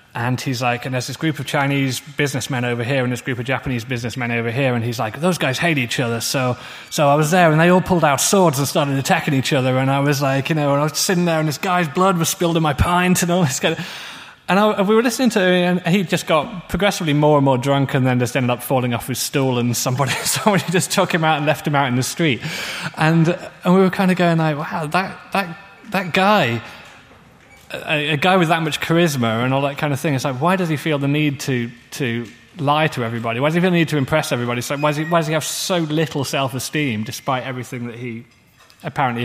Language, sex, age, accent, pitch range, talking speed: Swedish, male, 20-39, British, 125-165 Hz, 260 wpm